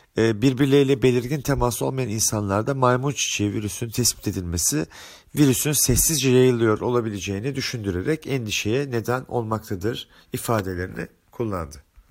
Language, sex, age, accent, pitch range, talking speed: Turkish, male, 40-59, native, 110-135 Hz, 100 wpm